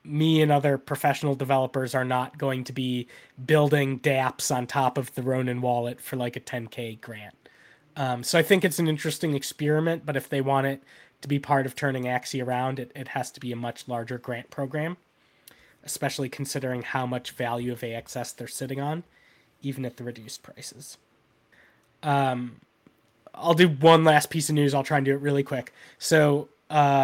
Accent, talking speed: American, 190 wpm